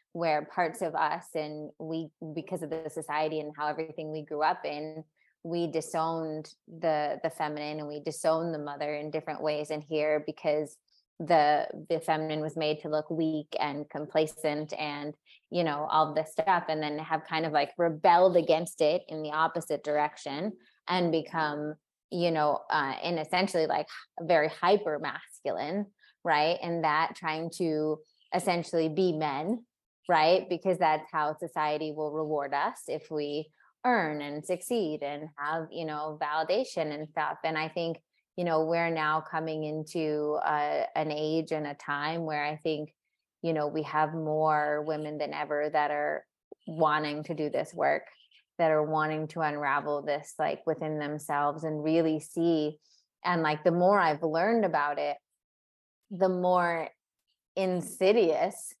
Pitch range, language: 150-165 Hz, English